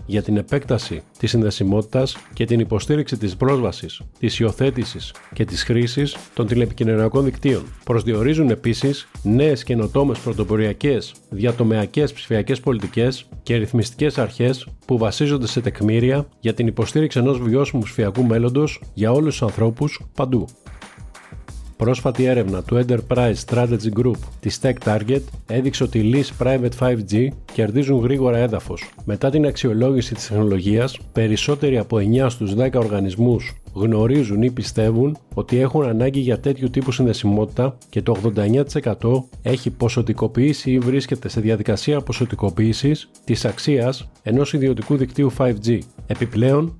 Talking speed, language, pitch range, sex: 130 wpm, Greek, 110-135 Hz, male